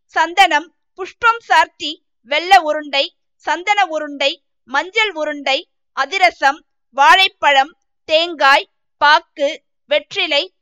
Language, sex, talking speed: Tamil, female, 80 wpm